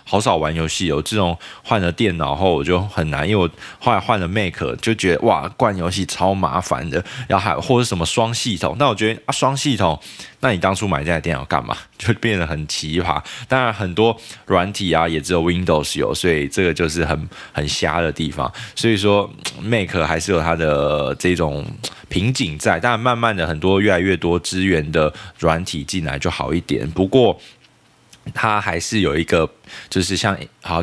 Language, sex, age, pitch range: Chinese, male, 20-39, 80-110 Hz